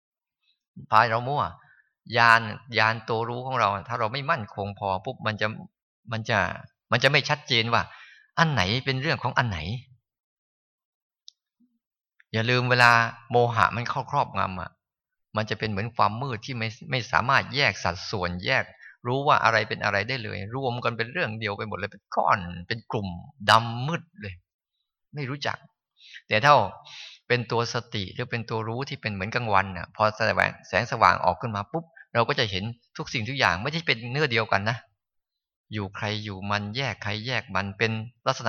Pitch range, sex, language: 105-130 Hz, male, Thai